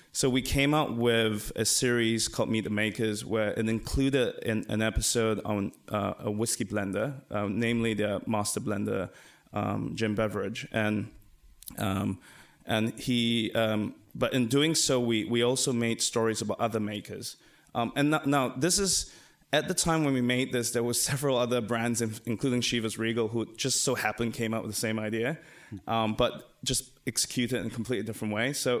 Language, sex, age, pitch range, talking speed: English, male, 20-39, 110-125 Hz, 185 wpm